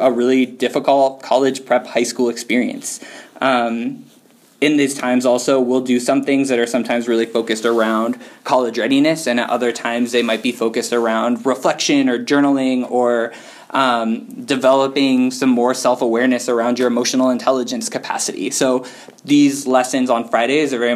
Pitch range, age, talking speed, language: 120-135 Hz, 20-39, 155 wpm, English